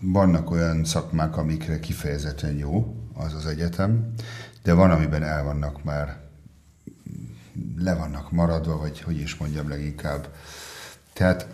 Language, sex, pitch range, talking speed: Hungarian, male, 75-90 Hz, 125 wpm